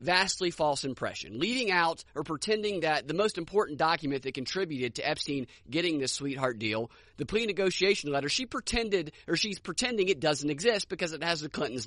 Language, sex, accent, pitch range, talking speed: English, male, American, 155-250 Hz, 185 wpm